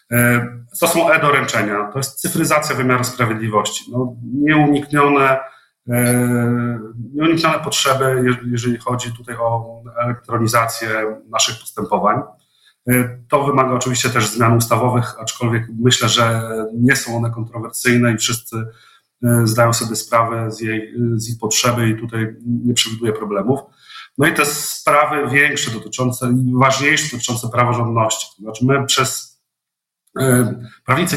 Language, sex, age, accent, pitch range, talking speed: Polish, male, 40-59, native, 115-130 Hz, 110 wpm